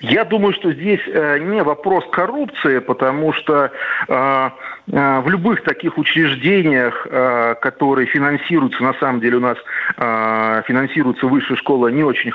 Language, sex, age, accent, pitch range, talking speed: Russian, male, 40-59, native, 140-195 Hz, 120 wpm